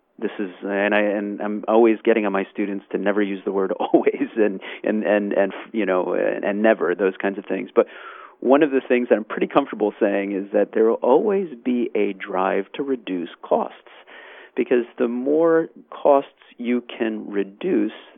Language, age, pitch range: English, 40-59, 105-145 Hz